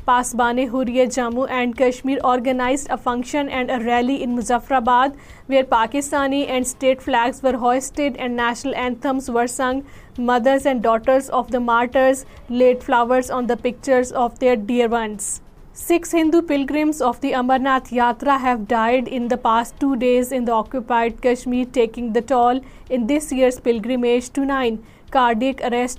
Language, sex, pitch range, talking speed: Urdu, female, 245-265 Hz, 160 wpm